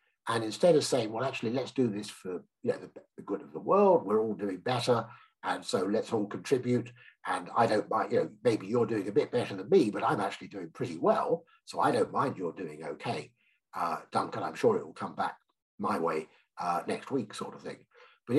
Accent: British